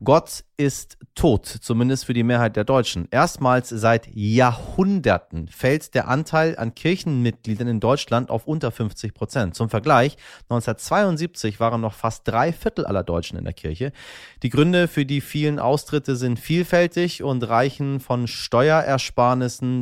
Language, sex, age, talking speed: German, male, 30-49, 145 wpm